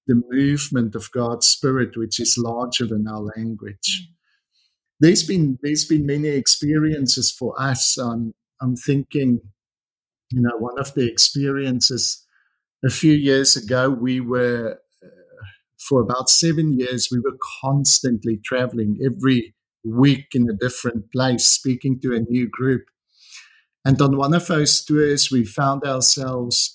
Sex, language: male, English